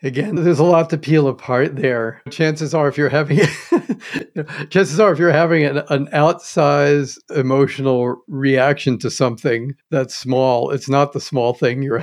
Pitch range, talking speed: 135-190 Hz, 175 wpm